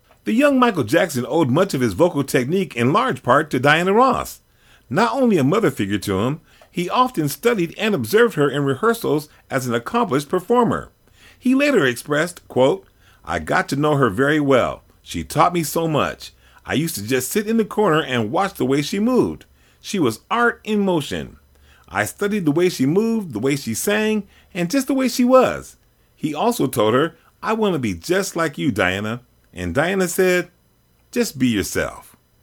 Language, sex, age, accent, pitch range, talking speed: English, male, 40-59, American, 130-210 Hz, 190 wpm